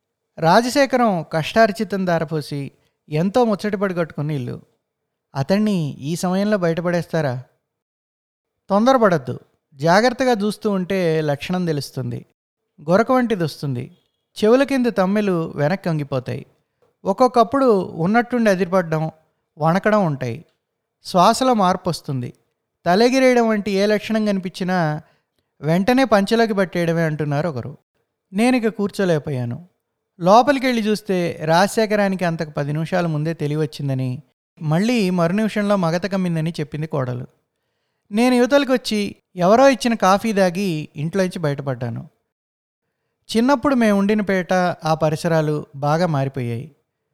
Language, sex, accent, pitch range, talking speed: Telugu, male, native, 150-210 Hz, 100 wpm